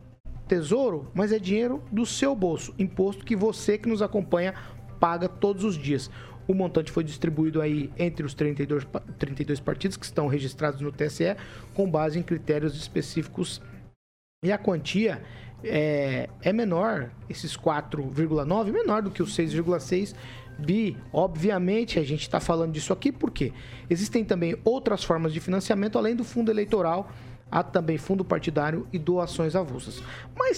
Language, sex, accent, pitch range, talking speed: Portuguese, male, Brazilian, 150-205 Hz, 150 wpm